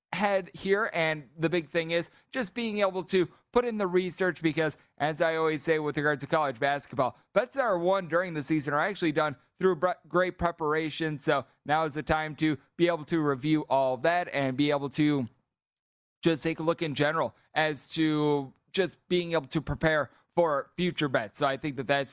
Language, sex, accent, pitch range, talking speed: English, male, American, 135-160 Hz, 205 wpm